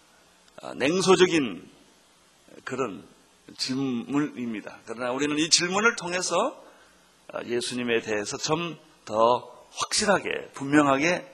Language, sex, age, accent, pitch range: Korean, male, 40-59, native, 130-185 Hz